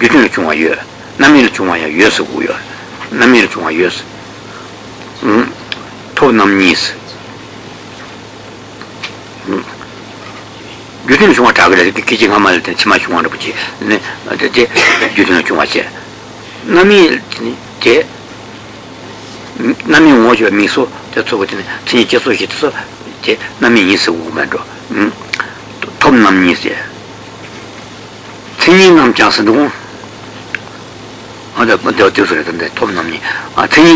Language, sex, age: Italian, male, 60-79